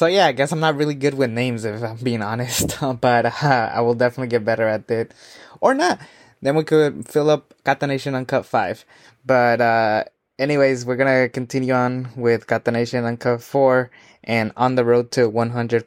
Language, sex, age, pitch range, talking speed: English, male, 20-39, 110-135 Hz, 200 wpm